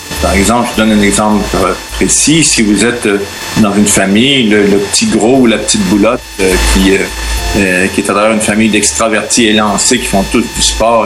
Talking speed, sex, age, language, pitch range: 205 wpm, male, 40-59, French, 100-120 Hz